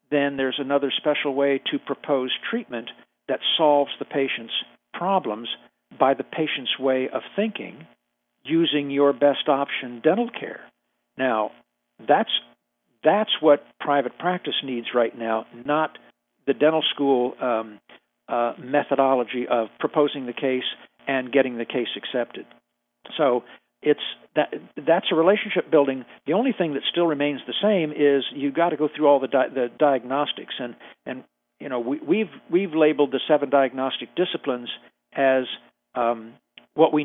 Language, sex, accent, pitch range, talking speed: English, male, American, 125-155 Hz, 150 wpm